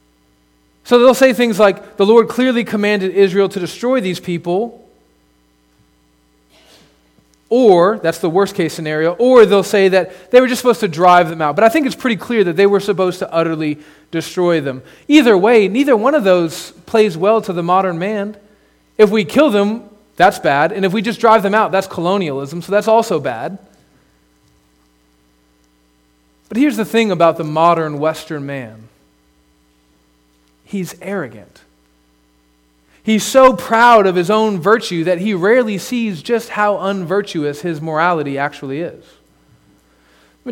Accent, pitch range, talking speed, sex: American, 130-205 Hz, 160 wpm, male